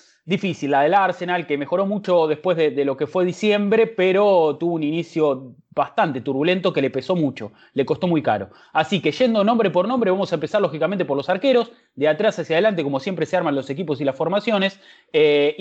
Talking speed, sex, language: 210 wpm, male, English